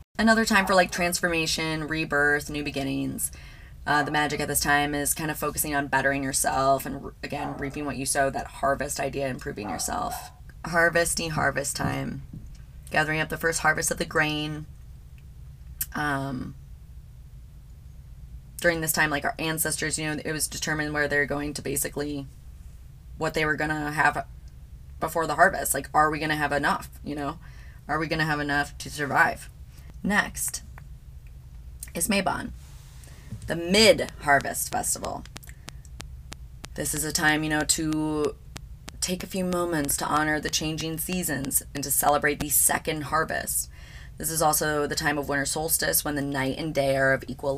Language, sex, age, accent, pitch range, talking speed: English, female, 20-39, American, 135-155 Hz, 165 wpm